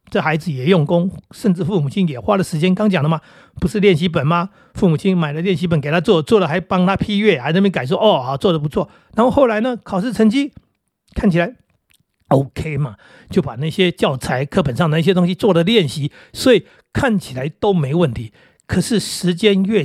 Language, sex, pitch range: Chinese, male, 160-205 Hz